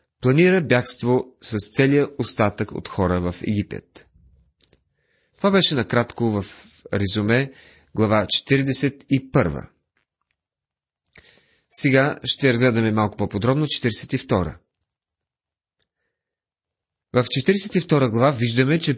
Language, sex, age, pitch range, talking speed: Bulgarian, male, 30-49, 105-145 Hz, 85 wpm